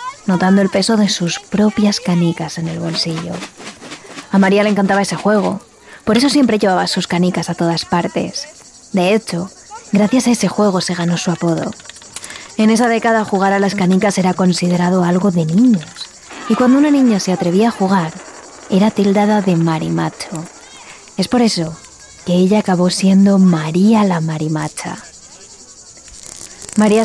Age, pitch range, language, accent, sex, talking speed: 20-39, 180-225 Hz, Spanish, Spanish, female, 155 wpm